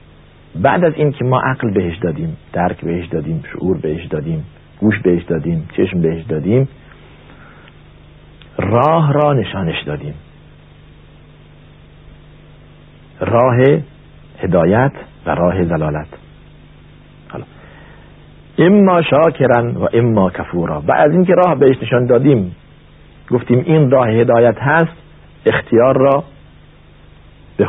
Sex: male